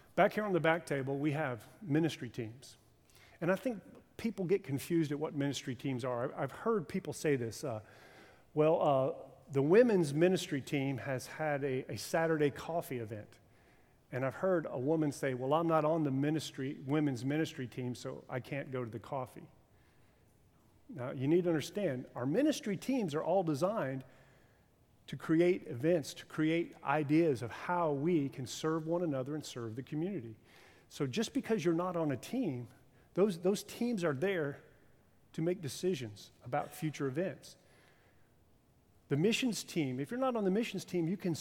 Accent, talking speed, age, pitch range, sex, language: American, 175 wpm, 40-59, 130-175 Hz, male, English